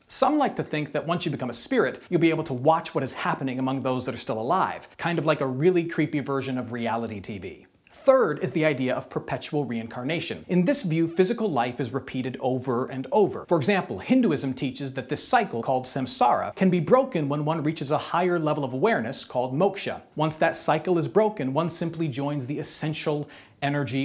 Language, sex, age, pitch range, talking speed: English, male, 40-59, 135-180 Hz, 210 wpm